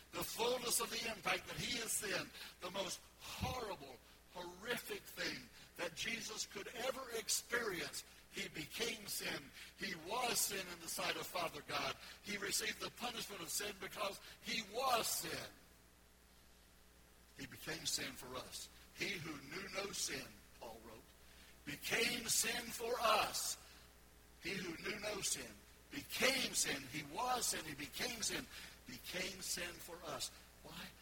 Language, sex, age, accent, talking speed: English, male, 60-79, American, 145 wpm